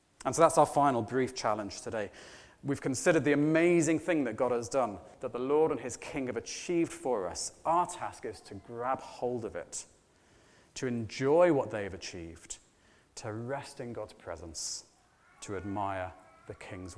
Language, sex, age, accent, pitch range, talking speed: English, male, 30-49, British, 100-130 Hz, 175 wpm